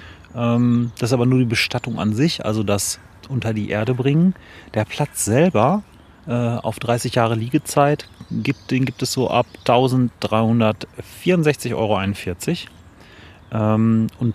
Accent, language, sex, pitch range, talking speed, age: German, German, male, 100-120 Hz, 125 wpm, 30-49